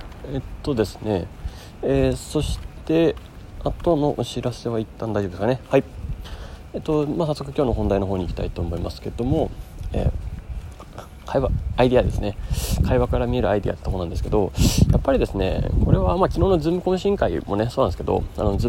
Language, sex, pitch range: Japanese, male, 90-130 Hz